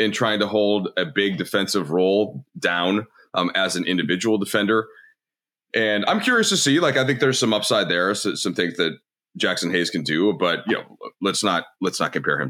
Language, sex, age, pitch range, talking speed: English, male, 30-49, 90-115 Hz, 200 wpm